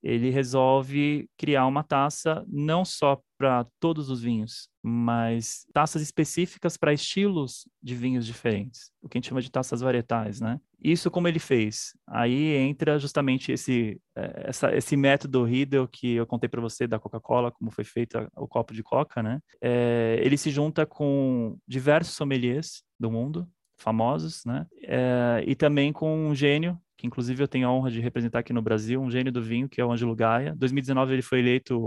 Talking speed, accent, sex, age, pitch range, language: 180 wpm, Brazilian, male, 20-39, 120-145 Hz, Portuguese